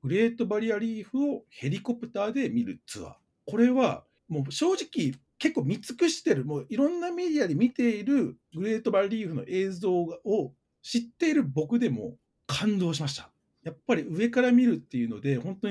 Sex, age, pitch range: male, 40-59, 145-235 Hz